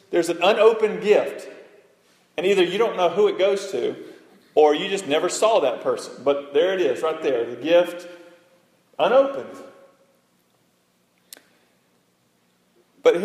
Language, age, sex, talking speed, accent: English, 40-59, male, 135 wpm, American